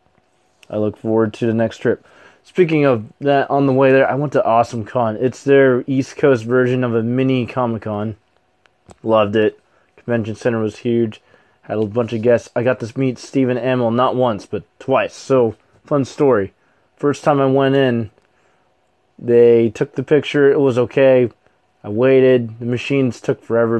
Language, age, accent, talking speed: English, 20-39, American, 175 wpm